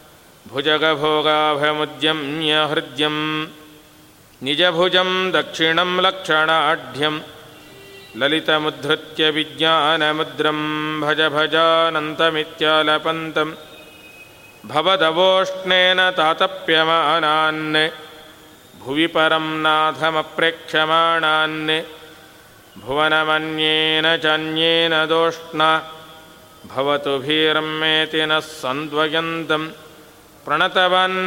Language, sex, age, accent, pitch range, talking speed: Kannada, male, 50-69, native, 155-165 Hz, 35 wpm